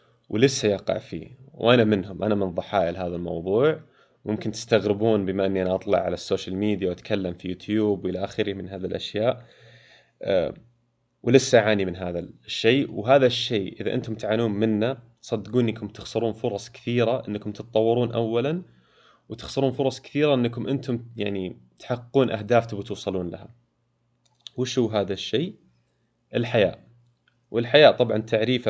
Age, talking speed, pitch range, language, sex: 20-39, 135 wpm, 100-120 Hz, Arabic, male